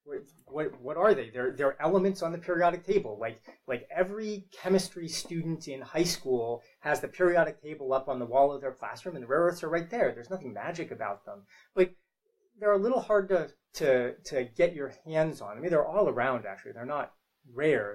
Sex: male